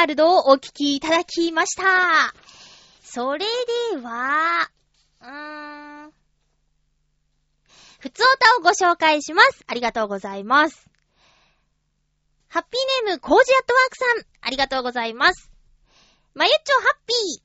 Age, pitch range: 20-39, 295-395 Hz